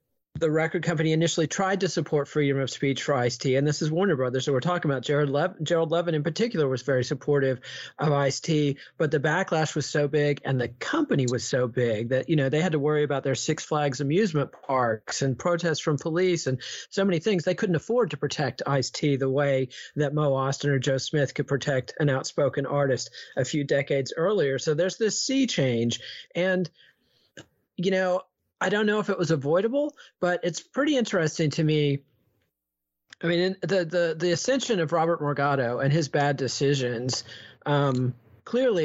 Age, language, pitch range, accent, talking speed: 40-59, English, 140-180 Hz, American, 195 wpm